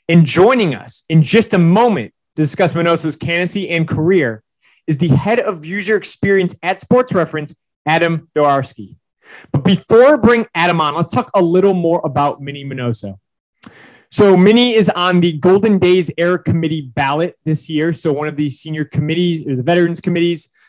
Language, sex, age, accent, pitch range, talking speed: English, male, 20-39, American, 145-180 Hz, 175 wpm